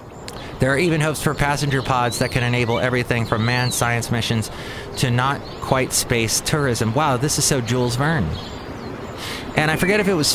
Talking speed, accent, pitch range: 185 wpm, American, 115-145 Hz